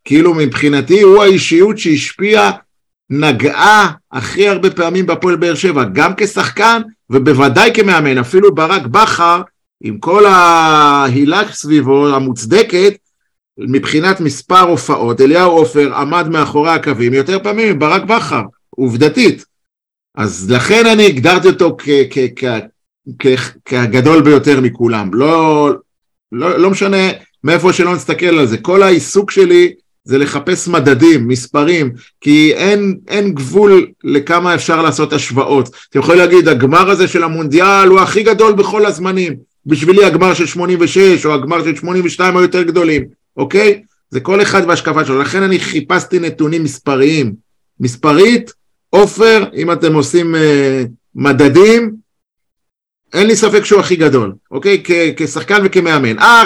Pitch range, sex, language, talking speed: 145-195 Hz, male, Hebrew, 135 wpm